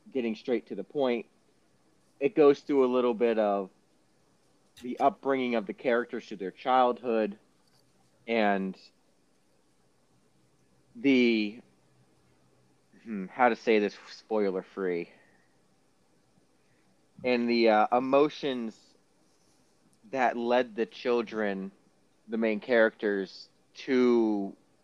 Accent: American